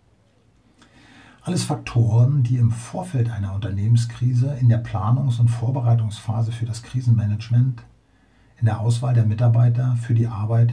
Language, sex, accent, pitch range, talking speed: German, male, German, 110-125 Hz, 130 wpm